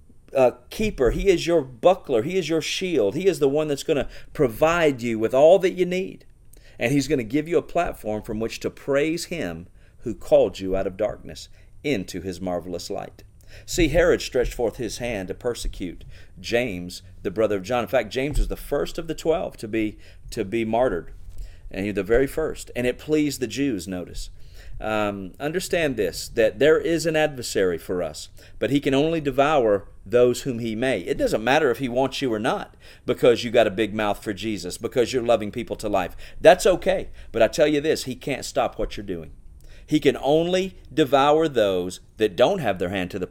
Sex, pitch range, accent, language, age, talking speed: male, 100-155 Hz, American, English, 40-59, 210 wpm